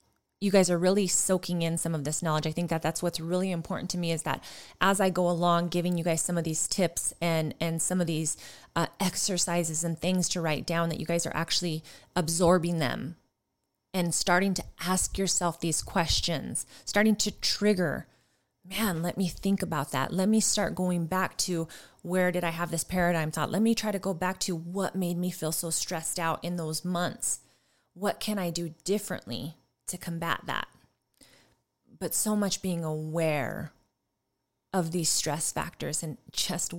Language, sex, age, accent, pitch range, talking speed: English, female, 20-39, American, 155-185 Hz, 190 wpm